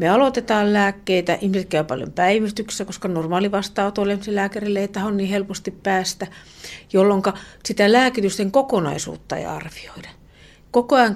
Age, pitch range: 50-69, 165-205 Hz